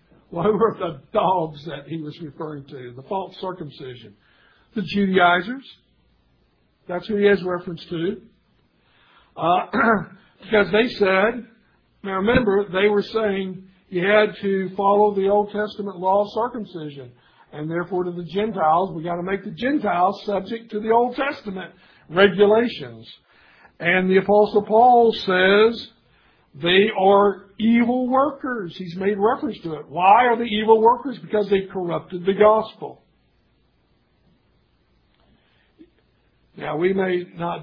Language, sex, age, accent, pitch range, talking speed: English, male, 60-79, American, 155-205 Hz, 135 wpm